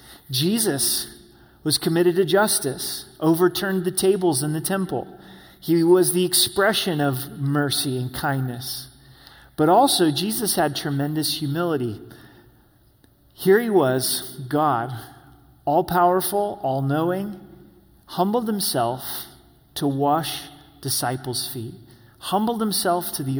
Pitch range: 130-175 Hz